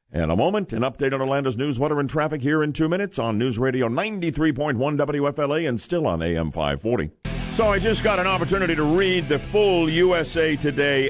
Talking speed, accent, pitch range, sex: 190 wpm, American, 125-160 Hz, male